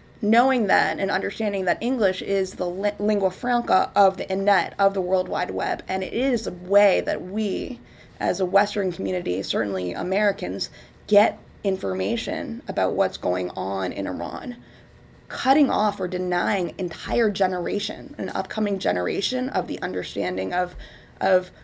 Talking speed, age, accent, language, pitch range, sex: 145 wpm, 20-39, American, English, 180-205 Hz, female